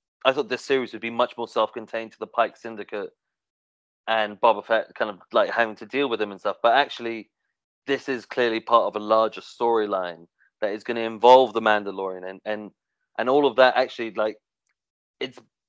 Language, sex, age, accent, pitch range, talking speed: English, male, 30-49, British, 105-125 Hz, 200 wpm